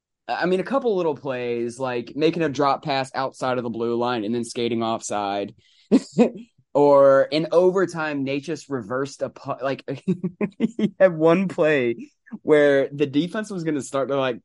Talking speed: 170 wpm